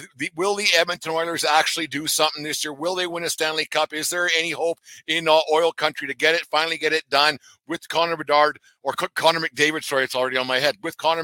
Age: 50-69